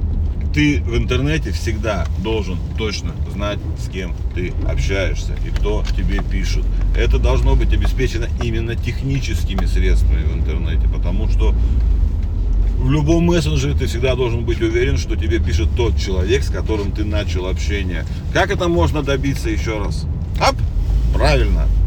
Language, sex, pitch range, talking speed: Russian, male, 80-95 Hz, 145 wpm